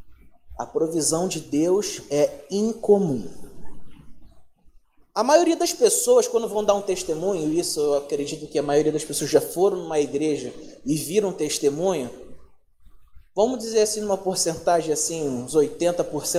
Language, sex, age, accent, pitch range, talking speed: Portuguese, male, 20-39, Brazilian, 185-285 Hz, 135 wpm